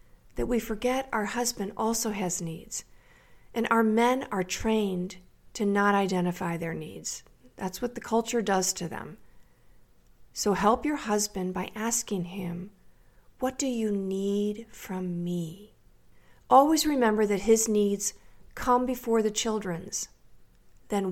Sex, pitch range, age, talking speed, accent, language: female, 190-240 Hz, 50-69, 135 wpm, American, English